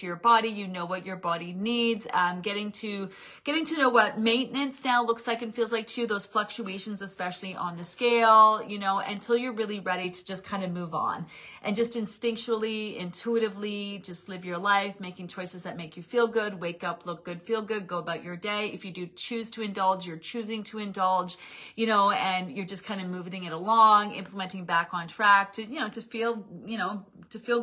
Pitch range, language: 190-230 Hz, English